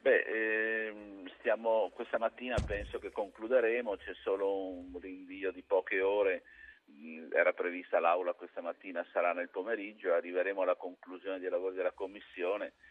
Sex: male